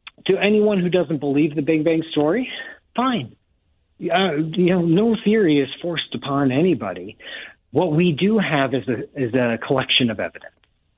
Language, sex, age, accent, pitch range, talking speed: English, male, 50-69, American, 135-185 Hz, 165 wpm